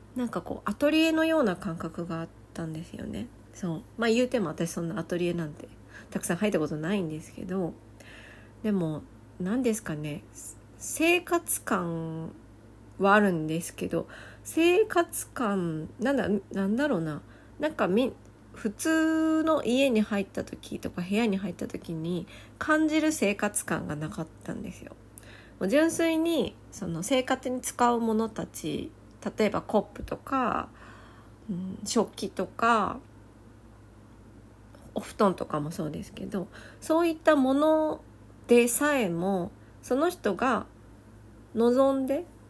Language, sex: Japanese, female